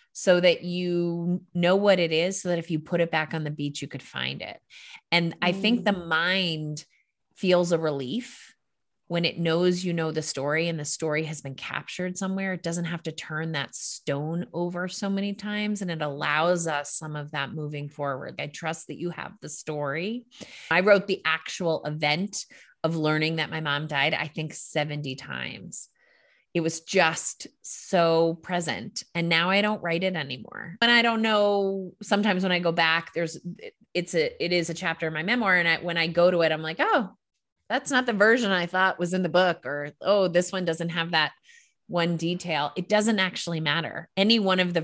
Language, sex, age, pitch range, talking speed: English, female, 30-49, 155-185 Hz, 205 wpm